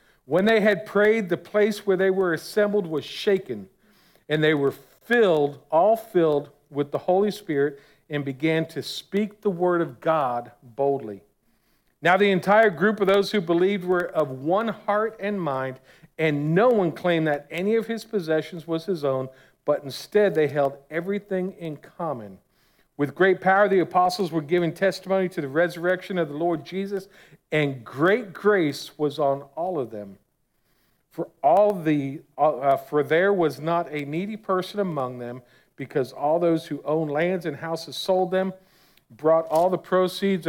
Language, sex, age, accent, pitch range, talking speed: English, male, 50-69, American, 145-190 Hz, 170 wpm